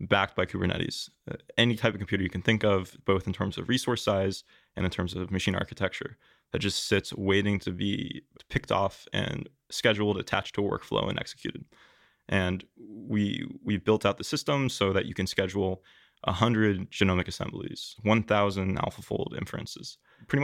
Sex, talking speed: male, 175 wpm